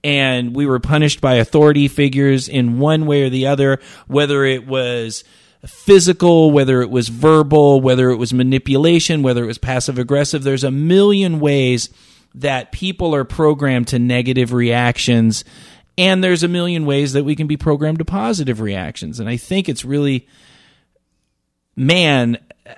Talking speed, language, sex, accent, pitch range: 155 wpm, English, male, American, 115-145 Hz